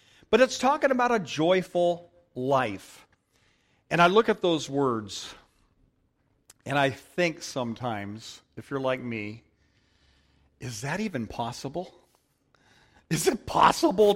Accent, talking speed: American, 120 wpm